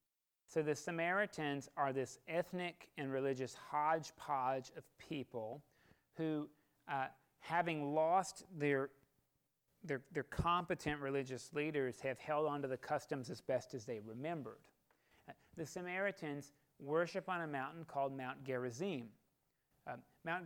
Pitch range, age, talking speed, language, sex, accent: 135-170 Hz, 40-59, 130 wpm, English, male, American